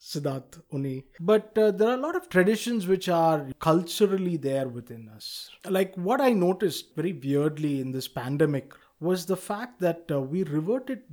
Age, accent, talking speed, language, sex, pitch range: 20-39, Indian, 175 wpm, English, male, 145-185 Hz